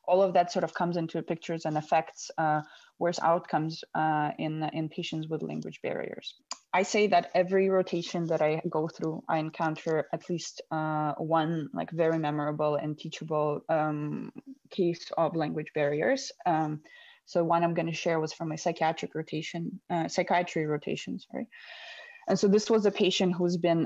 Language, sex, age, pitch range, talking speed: English, female, 20-39, 160-185 Hz, 175 wpm